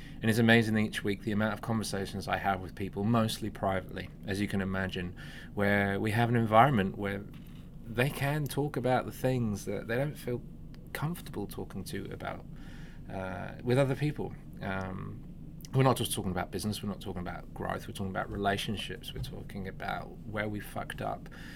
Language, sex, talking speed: English, male, 185 wpm